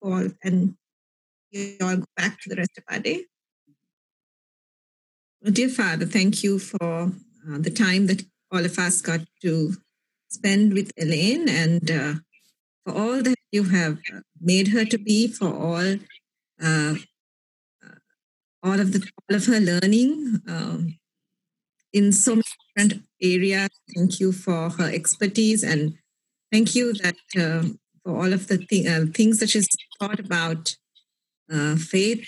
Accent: Indian